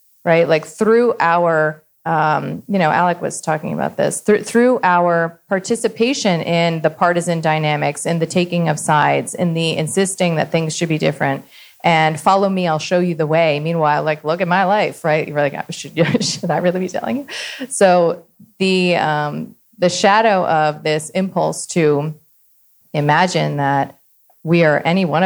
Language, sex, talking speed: English, female, 175 wpm